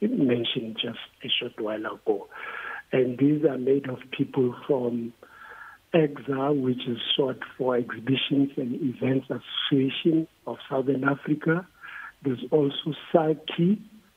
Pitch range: 140-175 Hz